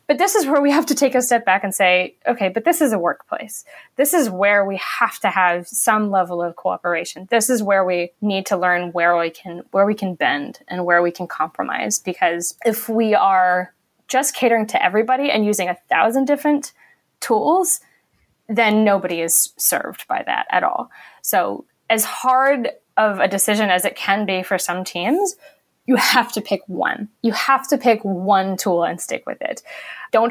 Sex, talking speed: female, 200 wpm